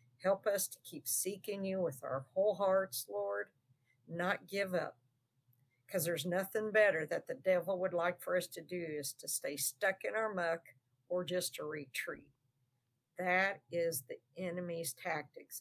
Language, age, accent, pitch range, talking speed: English, 50-69, American, 130-190 Hz, 165 wpm